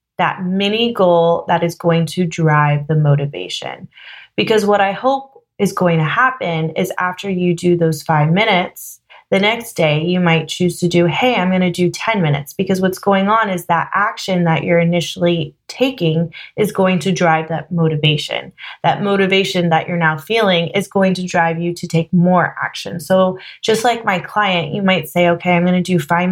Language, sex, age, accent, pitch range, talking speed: English, female, 20-39, American, 165-200 Hz, 195 wpm